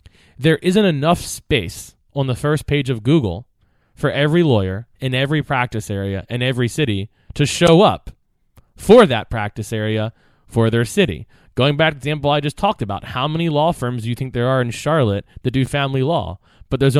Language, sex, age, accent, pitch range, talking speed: English, male, 20-39, American, 115-160 Hz, 200 wpm